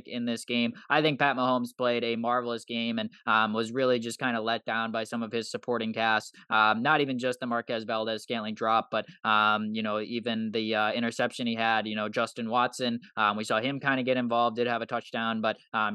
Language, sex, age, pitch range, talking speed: English, male, 20-39, 110-130 Hz, 235 wpm